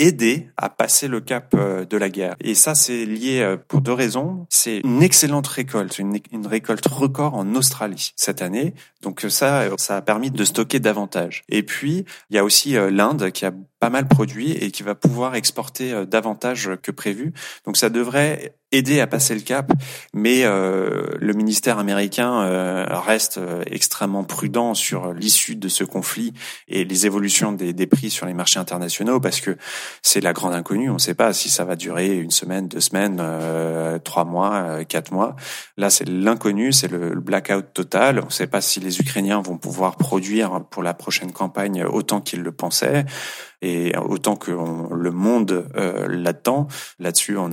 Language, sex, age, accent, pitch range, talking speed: French, male, 30-49, French, 90-120 Hz, 180 wpm